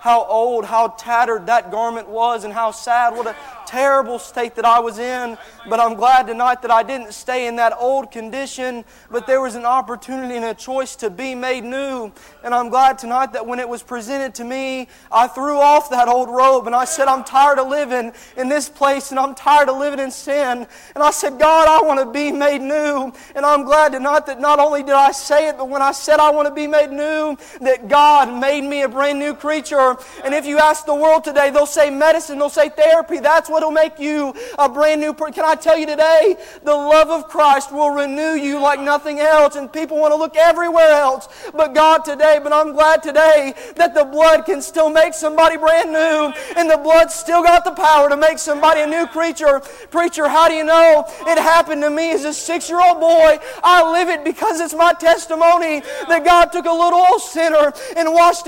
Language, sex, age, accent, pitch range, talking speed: English, male, 30-49, American, 260-315 Hz, 225 wpm